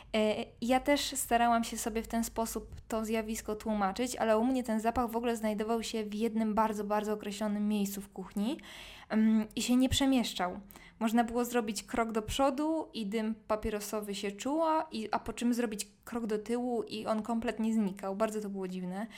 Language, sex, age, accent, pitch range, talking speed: Polish, female, 20-39, native, 200-235 Hz, 180 wpm